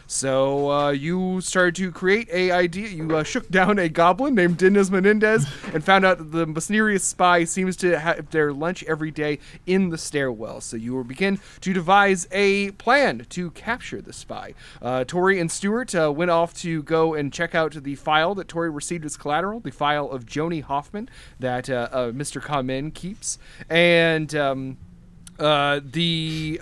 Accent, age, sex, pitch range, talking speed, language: American, 30-49, male, 135-180 Hz, 180 wpm, English